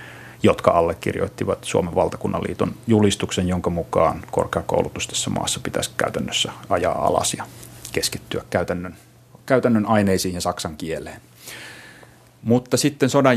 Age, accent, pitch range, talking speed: 30-49, native, 90-115 Hz, 110 wpm